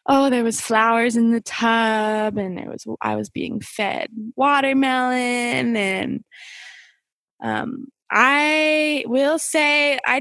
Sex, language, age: female, English, 20-39